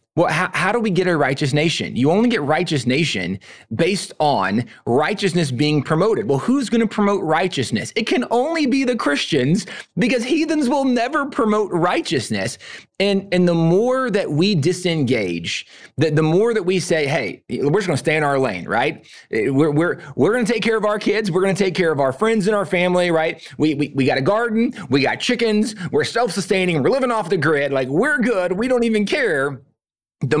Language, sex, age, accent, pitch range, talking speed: English, male, 30-49, American, 140-205 Hz, 200 wpm